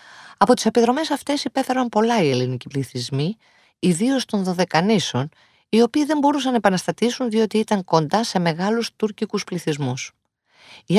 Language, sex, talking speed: Greek, female, 140 wpm